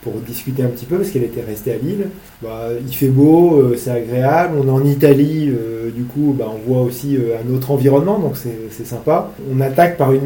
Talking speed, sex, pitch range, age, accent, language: 240 wpm, male, 115-140 Hz, 30-49, French, French